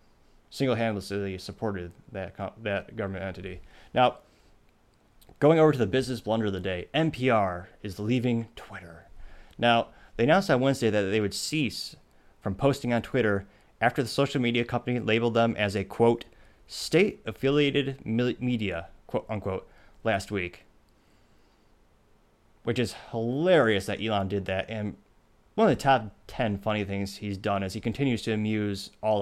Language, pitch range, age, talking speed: English, 100-120 Hz, 30-49, 150 wpm